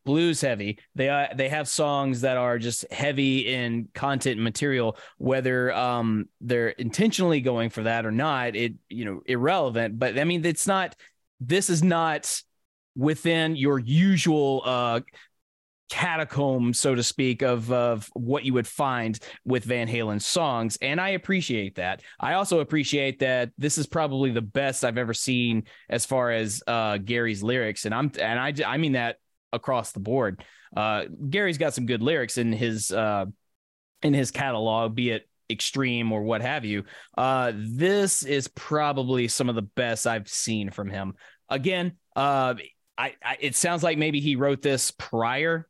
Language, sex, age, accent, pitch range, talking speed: English, male, 20-39, American, 115-145 Hz, 170 wpm